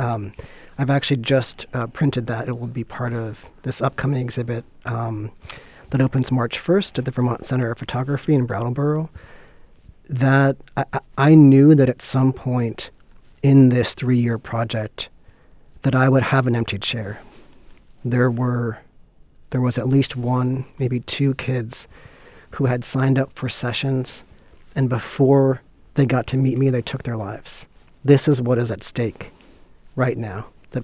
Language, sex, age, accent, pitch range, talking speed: English, male, 40-59, American, 120-135 Hz, 160 wpm